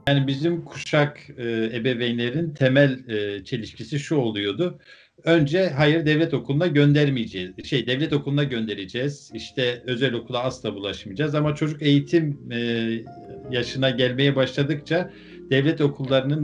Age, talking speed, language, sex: 50-69, 120 wpm, Turkish, male